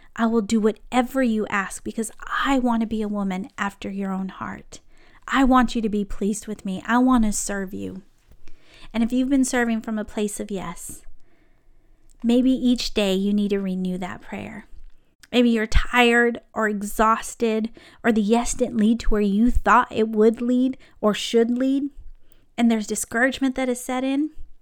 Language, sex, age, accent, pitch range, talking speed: English, female, 30-49, American, 210-255 Hz, 185 wpm